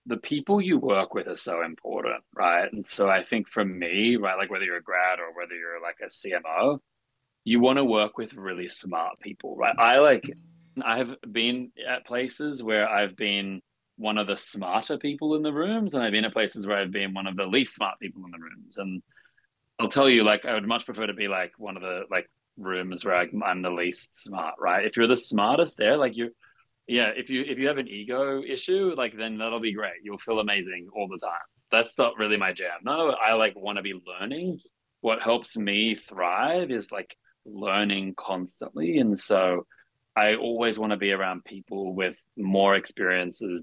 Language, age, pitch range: English, 20-39, 95-125 Hz